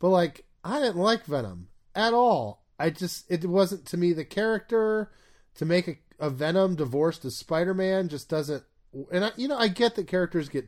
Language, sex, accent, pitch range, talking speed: English, male, American, 135-185 Hz, 190 wpm